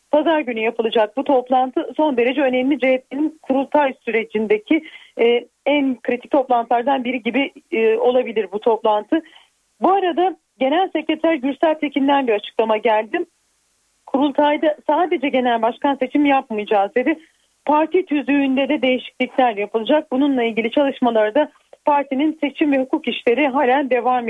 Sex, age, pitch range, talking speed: female, 40-59, 245-305 Hz, 125 wpm